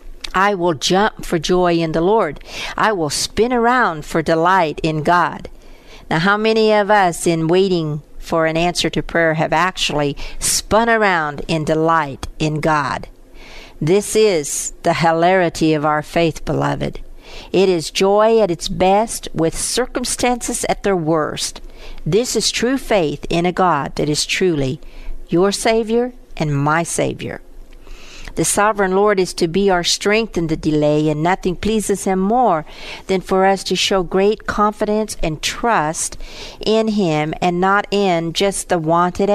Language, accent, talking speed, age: English, American, 155 wpm, 60-79